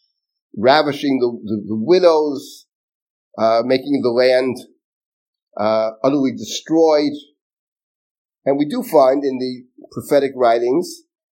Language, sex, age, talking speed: English, male, 50-69, 105 wpm